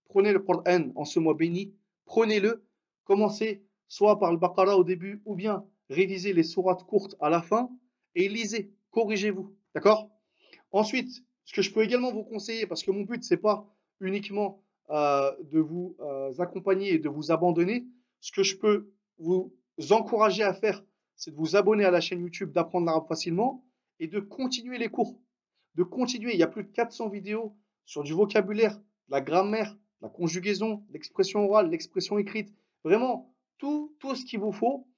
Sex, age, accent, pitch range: male, 30-49, French, 190-235 Hz